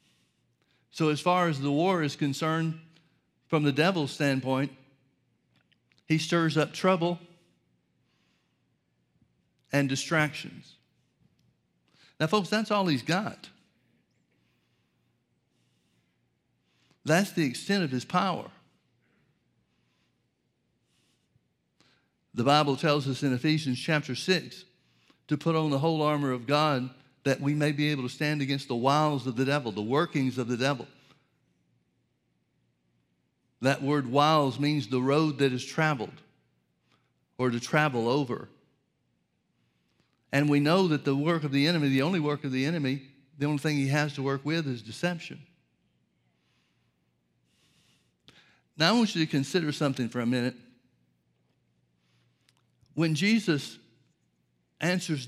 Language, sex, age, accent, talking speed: English, male, 50-69, American, 125 wpm